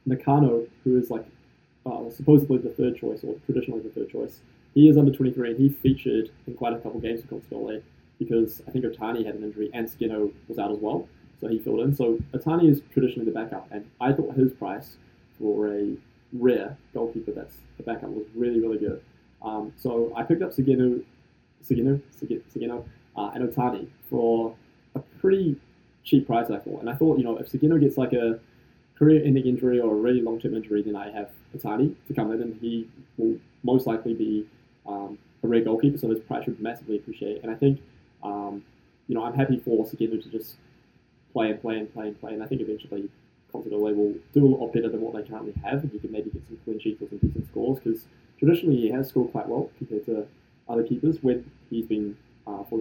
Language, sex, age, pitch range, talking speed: English, male, 20-39, 110-130 Hz, 210 wpm